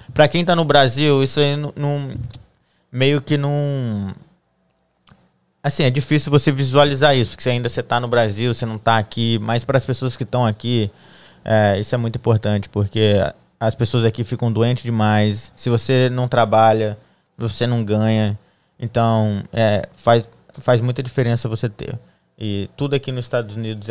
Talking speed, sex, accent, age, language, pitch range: 160 wpm, male, Brazilian, 20-39, Portuguese, 110-125 Hz